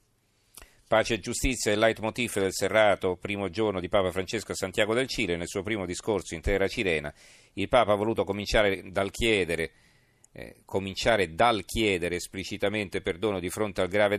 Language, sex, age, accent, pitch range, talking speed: Italian, male, 40-59, native, 90-105 Hz, 160 wpm